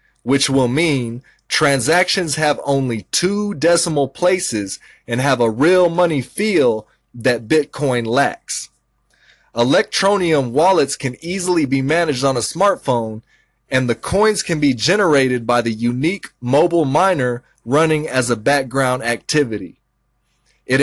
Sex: male